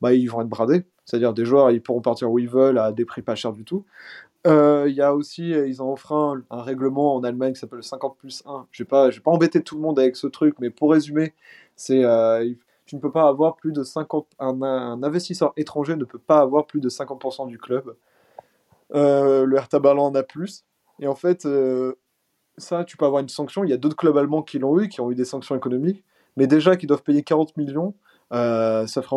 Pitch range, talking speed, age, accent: 125-155 Hz, 245 wpm, 20-39, French